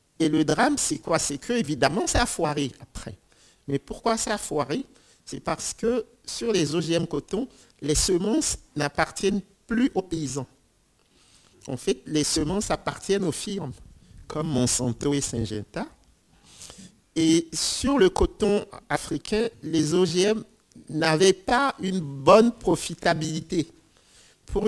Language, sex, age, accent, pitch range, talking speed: French, male, 50-69, French, 140-195 Hz, 130 wpm